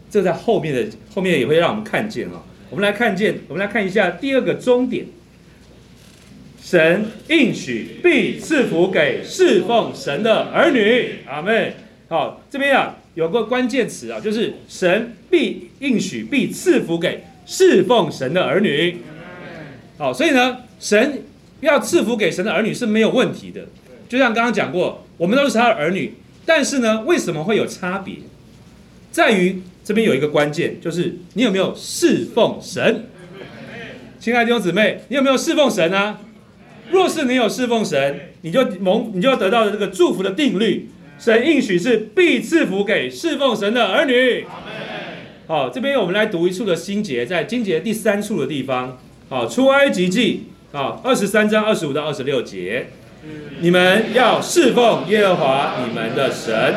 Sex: male